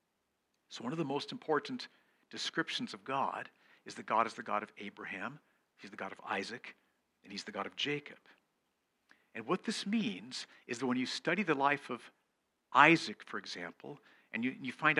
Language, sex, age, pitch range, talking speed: English, male, 50-69, 145-195 Hz, 190 wpm